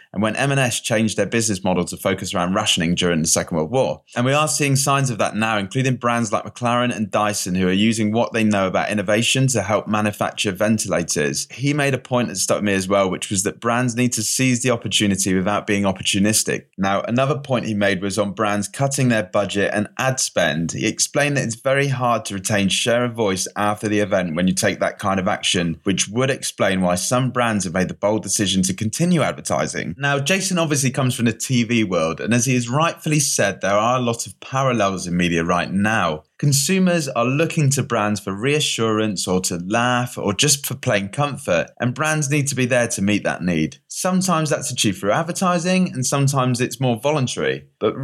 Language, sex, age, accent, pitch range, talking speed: English, male, 20-39, British, 95-130 Hz, 215 wpm